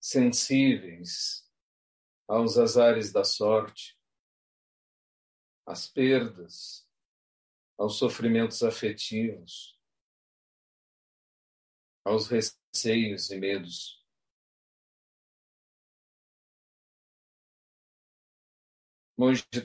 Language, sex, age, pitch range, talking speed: Portuguese, male, 40-59, 105-125 Hz, 45 wpm